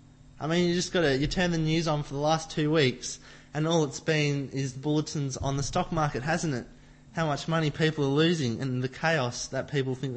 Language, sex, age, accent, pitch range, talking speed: English, male, 20-39, Australian, 130-160 Hz, 230 wpm